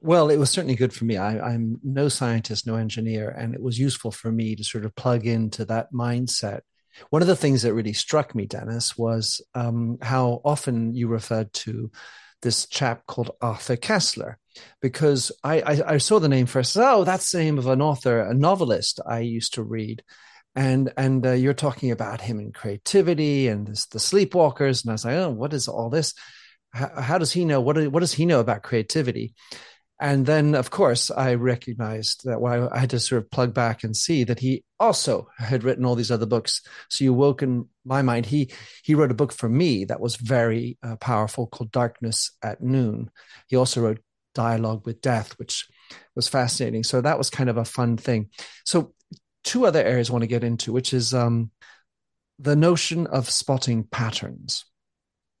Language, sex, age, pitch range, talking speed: English, male, 40-59, 115-135 Hz, 200 wpm